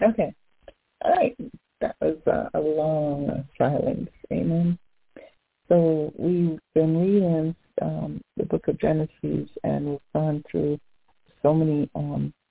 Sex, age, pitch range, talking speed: female, 50-69, 135-160 Hz, 125 wpm